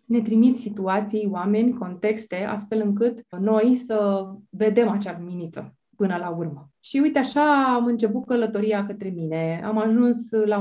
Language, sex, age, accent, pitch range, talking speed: Romanian, female, 20-39, native, 190-225 Hz, 145 wpm